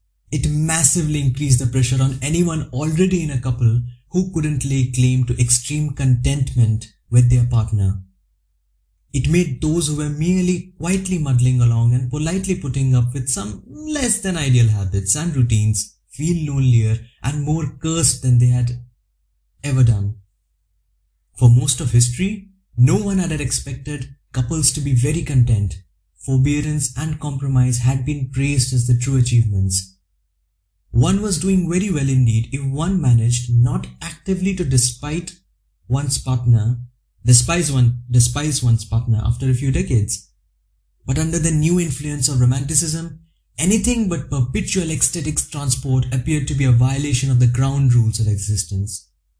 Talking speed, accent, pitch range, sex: 150 wpm, Indian, 115-155 Hz, male